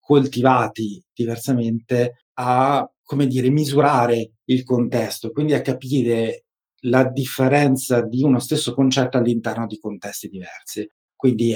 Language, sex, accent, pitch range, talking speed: Italian, male, native, 115-135 Hz, 115 wpm